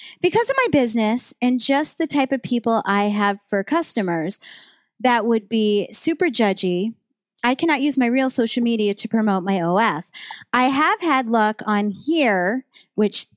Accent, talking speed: American, 165 wpm